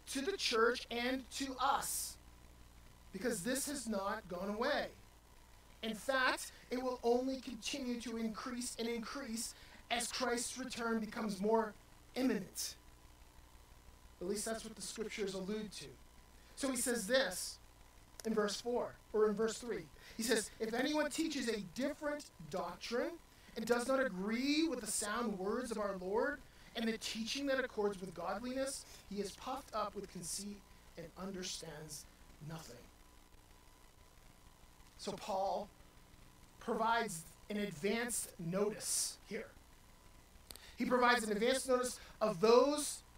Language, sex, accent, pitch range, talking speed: English, male, American, 190-250 Hz, 135 wpm